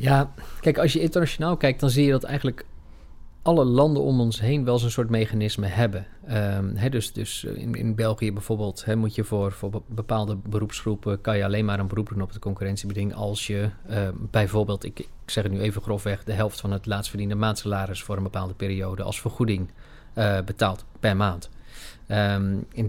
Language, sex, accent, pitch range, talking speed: English, male, Dutch, 100-125 Hz, 190 wpm